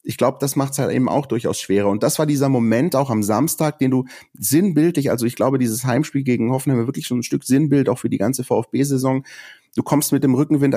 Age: 30-49